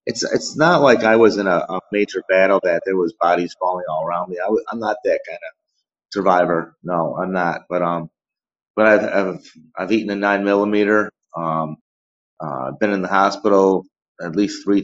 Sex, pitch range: male, 85-105 Hz